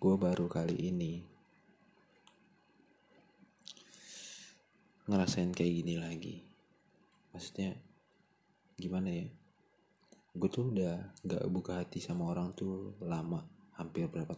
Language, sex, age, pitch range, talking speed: Indonesian, male, 20-39, 85-95 Hz, 95 wpm